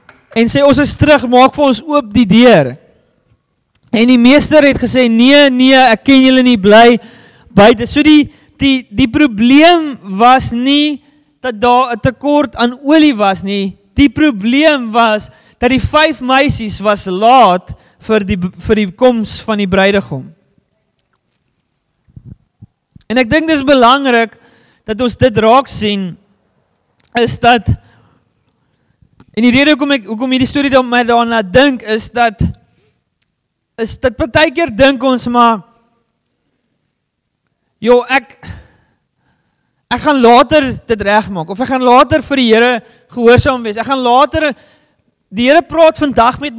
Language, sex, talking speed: English, male, 145 wpm